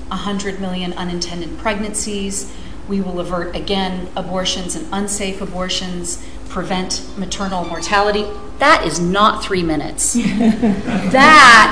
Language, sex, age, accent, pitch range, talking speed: English, female, 40-59, American, 175-215 Hz, 110 wpm